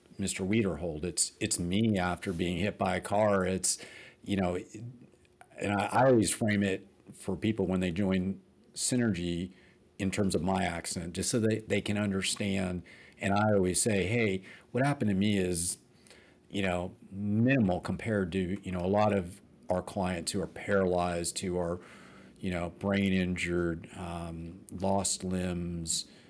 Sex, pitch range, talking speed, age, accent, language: male, 90-100 Hz, 160 wpm, 50-69, American, English